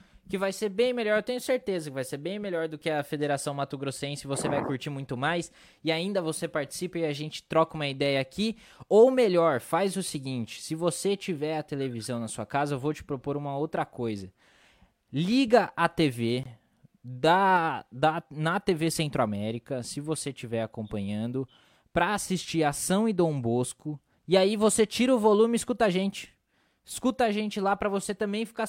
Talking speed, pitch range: 190 wpm, 145-200 Hz